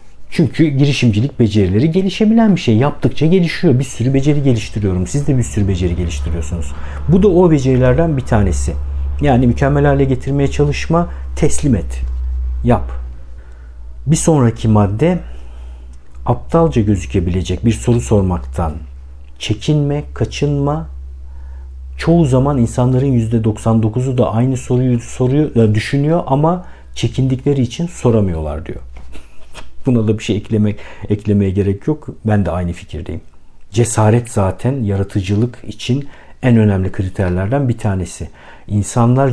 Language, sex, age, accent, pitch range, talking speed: Turkish, male, 50-69, native, 90-130 Hz, 115 wpm